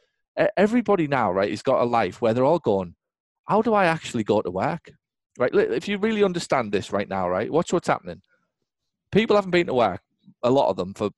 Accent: British